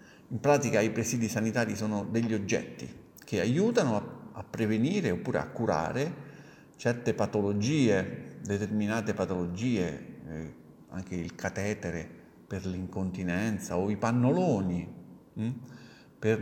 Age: 50-69